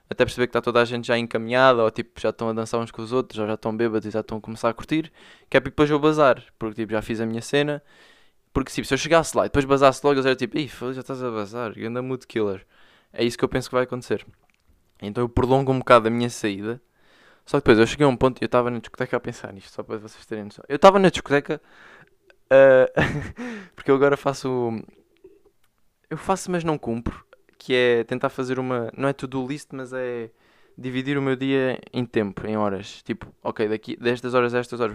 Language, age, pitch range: Portuguese, 20-39, 110-135 Hz